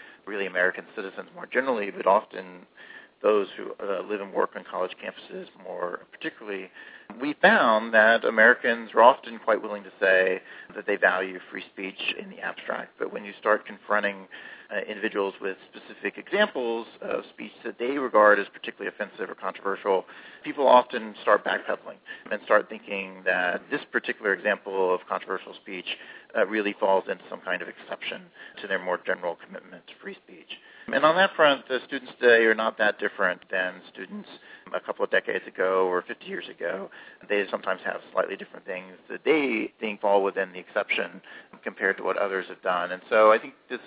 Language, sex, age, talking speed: English, male, 40-59, 180 wpm